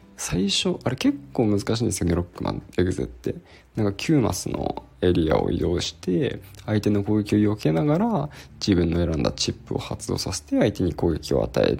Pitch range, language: 95-140 Hz, Japanese